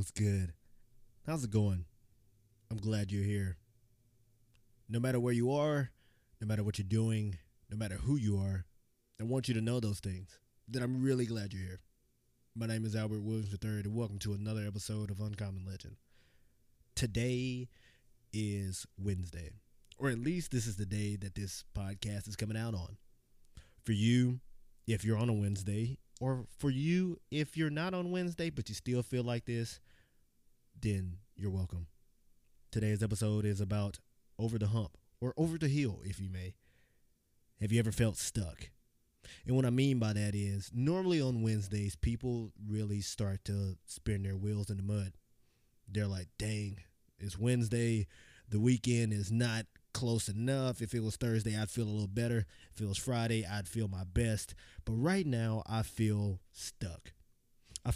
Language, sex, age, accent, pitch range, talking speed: English, male, 20-39, American, 100-120 Hz, 170 wpm